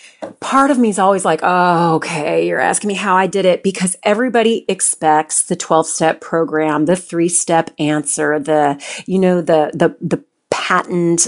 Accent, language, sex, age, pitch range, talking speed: American, English, female, 40-59, 155-195 Hz, 165 wpm